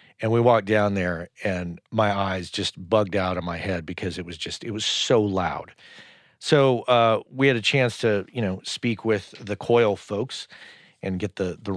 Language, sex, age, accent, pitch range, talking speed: English, male, 40-59, American, 95-115 Hz, 205 wpm